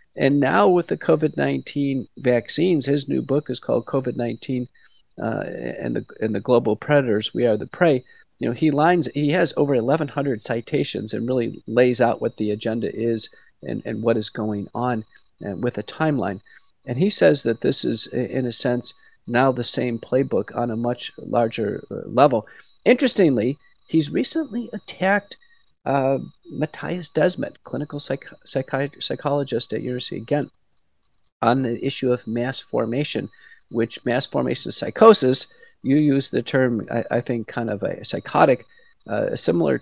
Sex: male